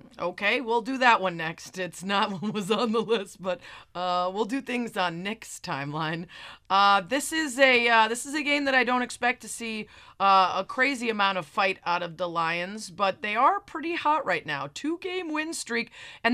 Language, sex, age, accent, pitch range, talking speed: English, female, 30-49, American, 190-245 Hz, 210 wpm